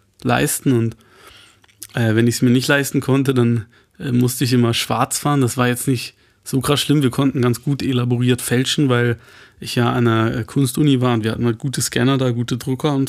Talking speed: 215 wpm